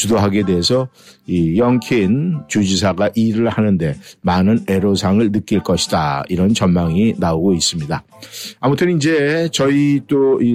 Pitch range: 100-135 Hz